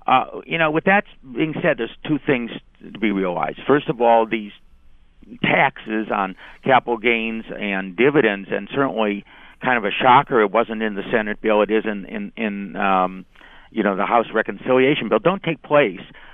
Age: 50-69